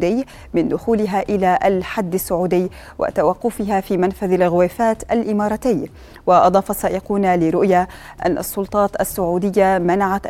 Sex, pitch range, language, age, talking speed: female, 180-210 Hz, Arabic, 20-39, 100 wpm